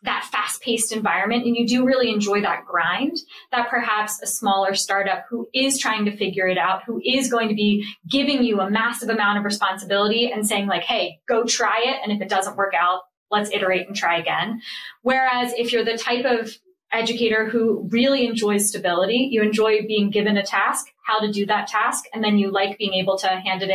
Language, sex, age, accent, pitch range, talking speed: English, female, 20-39, American, 195-240 Hz, 210 wpm